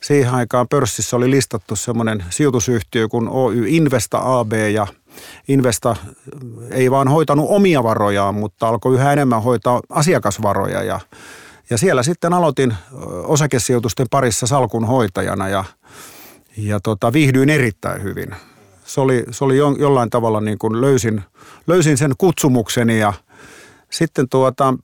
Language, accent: Finnish, native